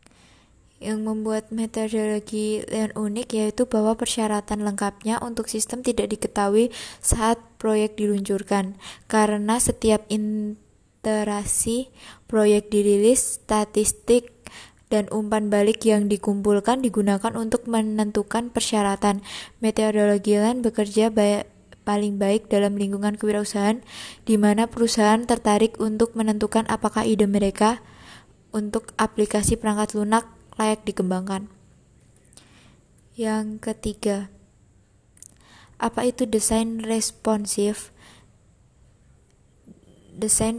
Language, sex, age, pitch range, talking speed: Indonesian, female, 20-39, 210-225 Hz, 90 wpm